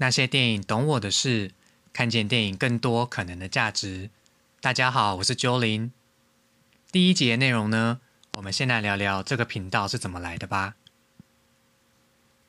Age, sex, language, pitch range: 20-39, male, Chinese, 95-125 Hz